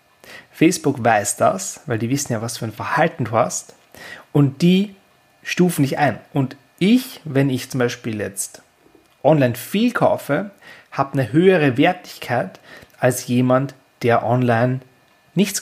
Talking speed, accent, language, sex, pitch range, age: 140 wpm, German, German, male, 120-155 Hz, 30-49